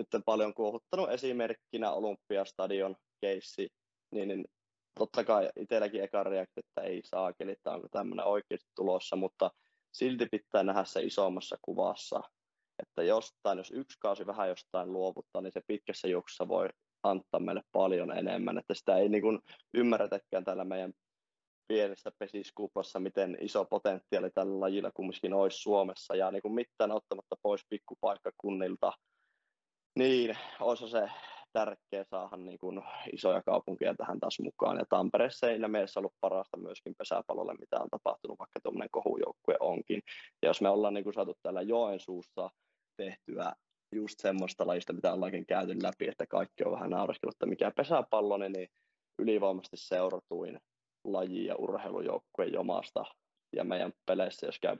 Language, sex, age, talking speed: Finnish, male, 20-39, 140 wpm